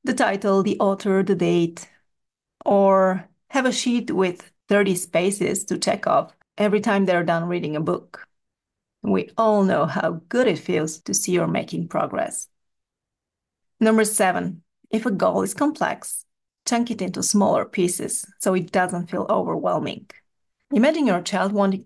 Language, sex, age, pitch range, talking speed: English, female, 30-49, 180-220 Hz, 155 wpm